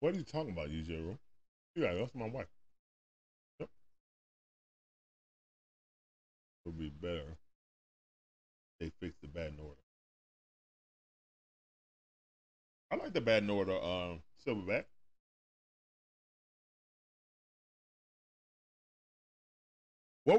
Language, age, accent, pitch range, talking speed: English, 40-59, American, 70-115 Hz, 90 wpm